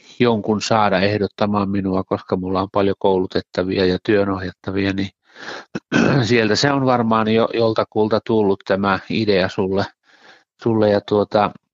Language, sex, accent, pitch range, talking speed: Finnish, male, native, 100-115 Hz, 120 wpm